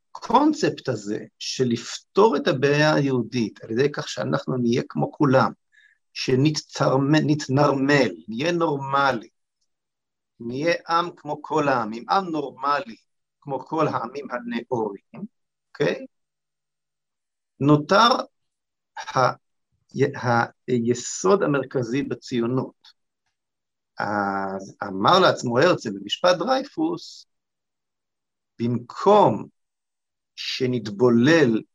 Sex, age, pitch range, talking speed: male, 50-69, 120-150 Hz, 80 wpm